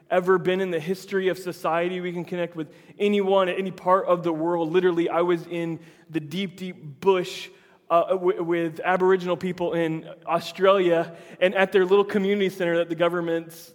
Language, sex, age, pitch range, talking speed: English, male, 20-39, 150-175 Hz, 185 wpm